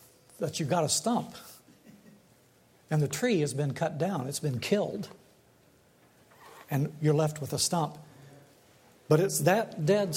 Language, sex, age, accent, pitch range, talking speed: English, male, 60-79, American, 140-170 Hz, 150 wpm